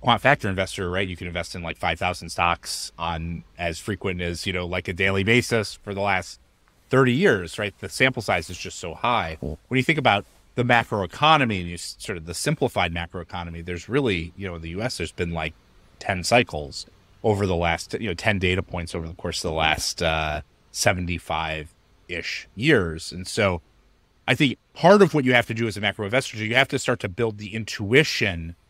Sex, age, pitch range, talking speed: male, 30-49, 85-115 Hz, 215 wpm